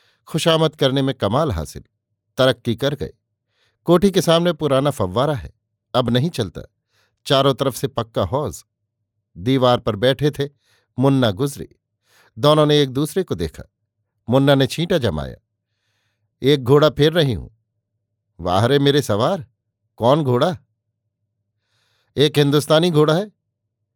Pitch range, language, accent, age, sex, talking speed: 110-150 Hz, Hindi, native, 50-69, male, 130 wpm